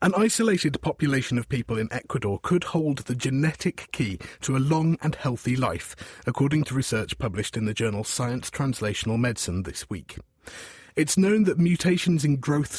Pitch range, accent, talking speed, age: 110-145 Hz, British, 170 wpm, 30-49